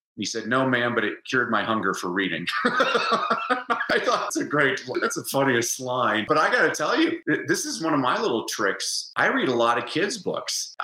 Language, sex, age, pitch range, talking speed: English, male, 40-59, 110-150 Hz, 220 wpm